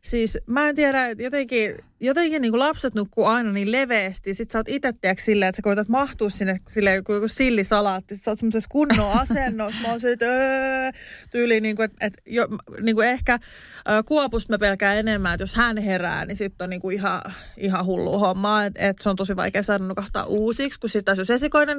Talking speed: 175 wpm